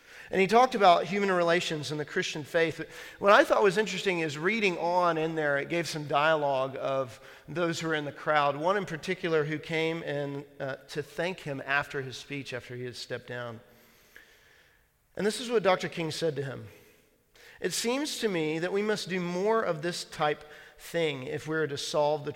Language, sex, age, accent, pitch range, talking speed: English, male, 40-59, American, 145-190 Hz, 205 wpm